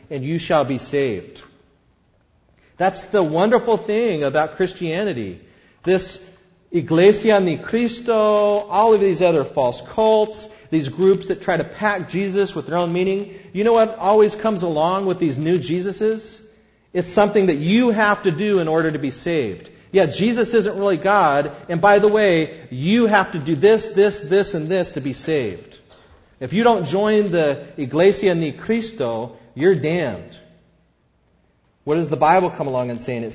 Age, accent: 40-59, American